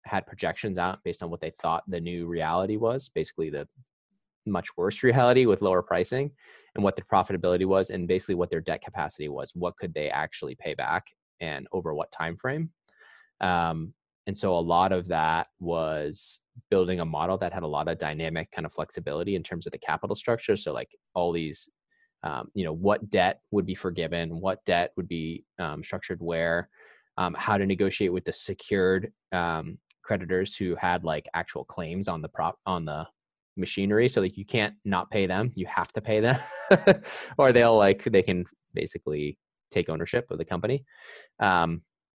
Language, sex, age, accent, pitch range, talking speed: English, male, 20-39, American, 85-110 Hz, 190 wpm